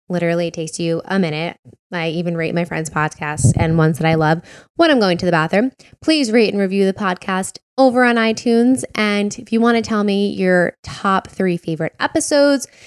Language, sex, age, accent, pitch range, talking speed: English, female, 10-29, American, 180-230 Hz, 200 wpm